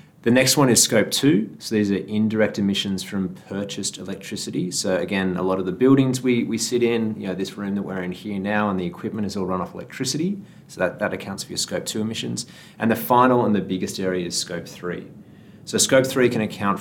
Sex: male